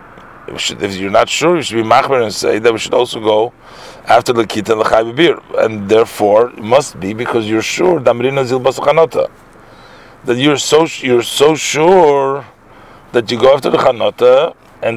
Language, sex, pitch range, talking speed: English, male, 110-160 Hz, 170 wpm